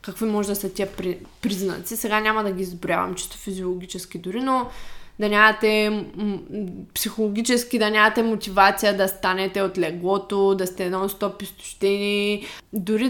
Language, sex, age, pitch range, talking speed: Bulgarian, female, 20-39, 200-235 Hz, 135 wpm